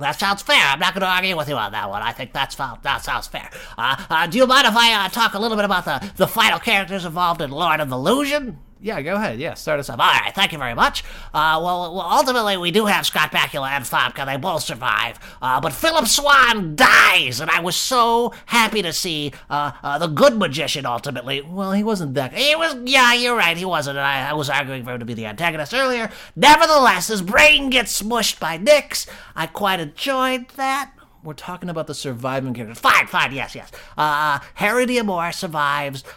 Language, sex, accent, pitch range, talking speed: English, male, American, 155-230 Hz, 225 wpm